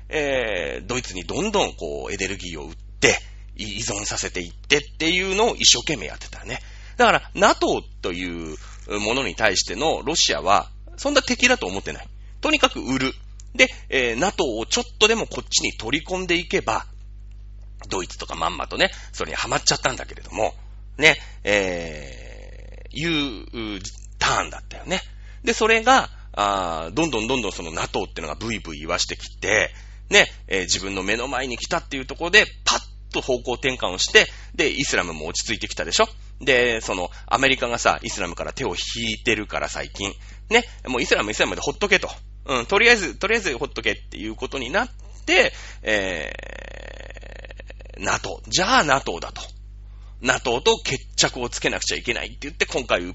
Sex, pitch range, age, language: male, 100-145 Hz, 40-59, Japanese